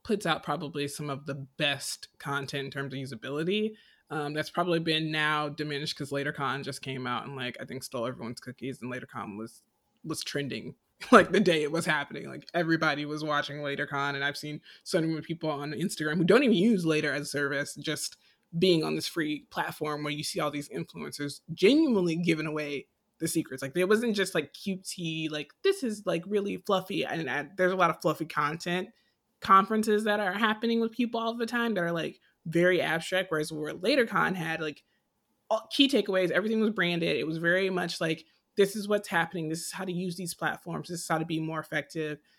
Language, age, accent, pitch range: English, 20-39, American, 150-180 Hz